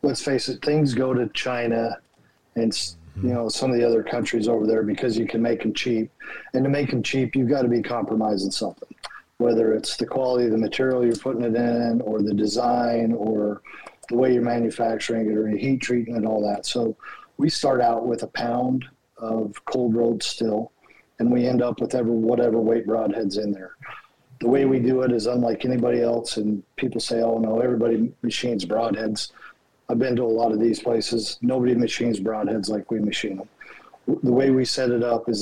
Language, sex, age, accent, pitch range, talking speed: English, male, 40-59, American, 115-125 Hz, 205 wpm